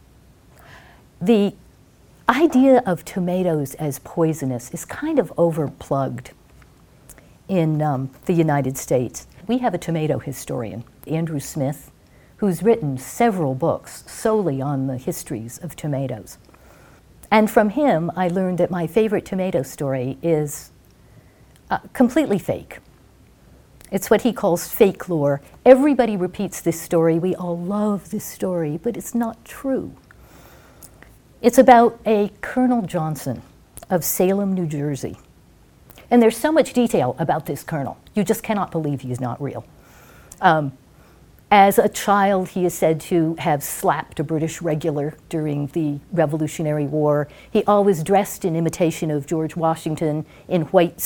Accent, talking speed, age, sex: American, 140 wpm, 50-69, female